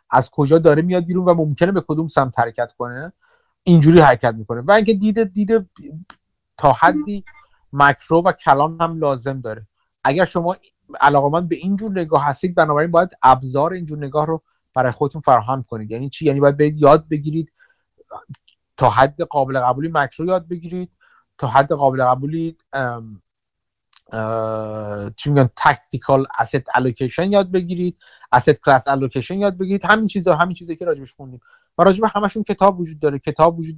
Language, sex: Persian, male